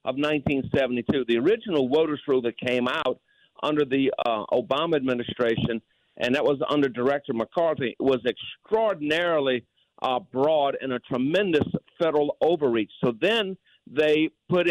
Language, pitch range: English, 130-170 Hz